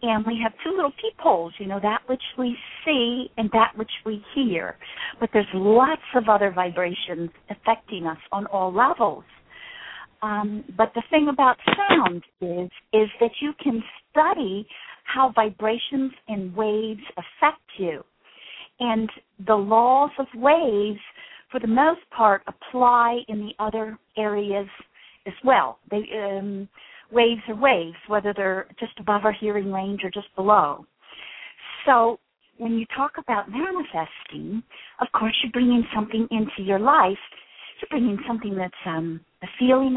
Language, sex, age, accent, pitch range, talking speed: English, female, 50-69, American, 200-245 Hz, 145 wpm